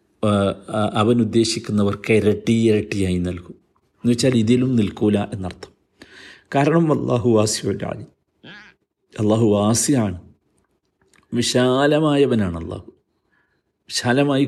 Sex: male